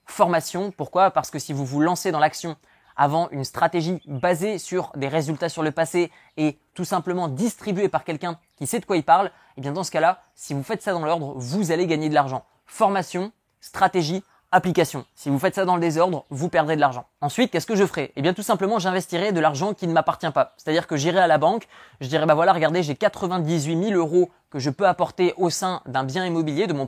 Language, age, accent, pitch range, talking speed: French, 20-39, French, 150-185 Hz, 235 wpm